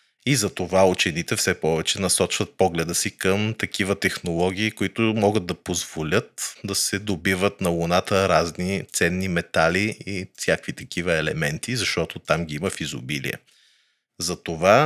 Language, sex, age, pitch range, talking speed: Bulgarian, male, 30-49, 90-110 Hz, 135 wpm